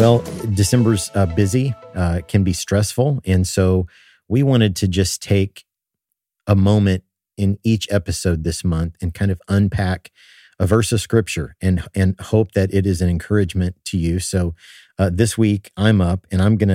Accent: American